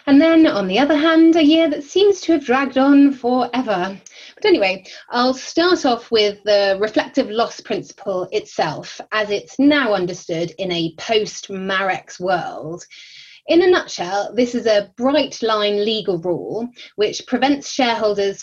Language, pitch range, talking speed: English, 185-250 Hz, 155 wpm